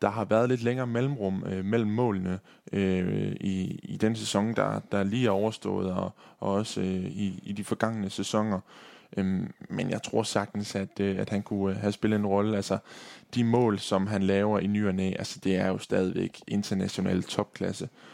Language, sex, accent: Danish, male, native